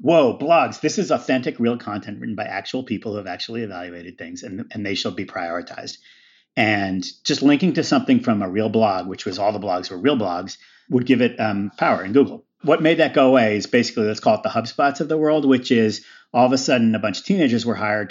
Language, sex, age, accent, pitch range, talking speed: English, male, 40-59, American, 110-165 Hz, 240 wpm